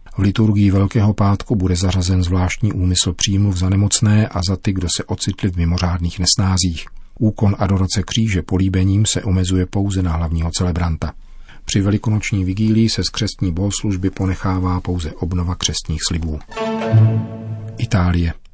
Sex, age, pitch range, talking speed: male, 40-59, 90-105 Hz, 140 wpm